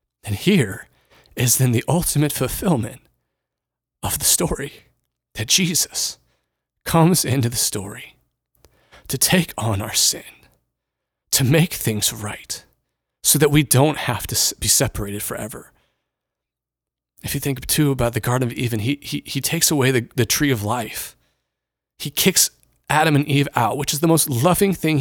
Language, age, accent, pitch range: English, 30-49, American, 110-150 Hz